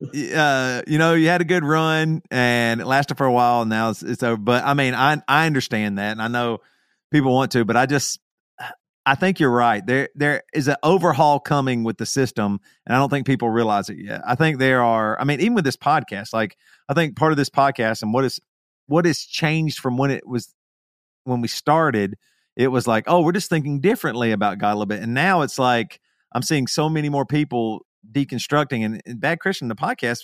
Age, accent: 40-59, American